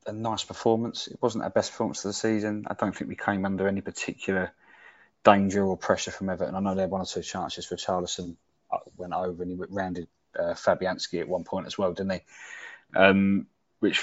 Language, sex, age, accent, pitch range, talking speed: English, male, 20-39, British, 90-105 Hz, 220 wpm